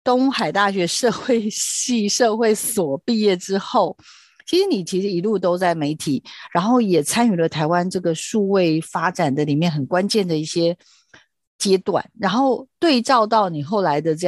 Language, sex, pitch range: Chinese, female, 165-220 Hz